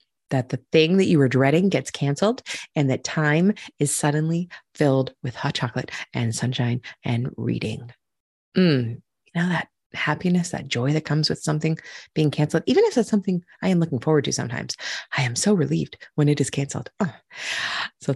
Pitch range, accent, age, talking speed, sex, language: 130-180 Hz, American, 30-49, 180 wpm, female, English